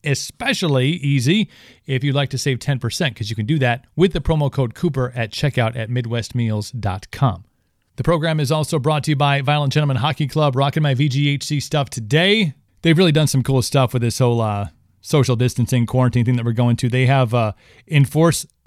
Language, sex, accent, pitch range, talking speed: English, male, American, 120-150 Hz, 195 wpm